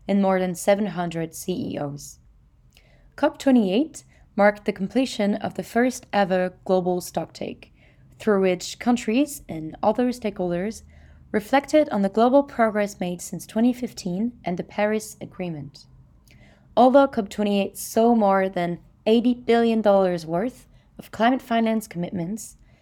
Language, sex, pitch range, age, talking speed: English, female, 175-225 Hz, 20-39, 120 wpm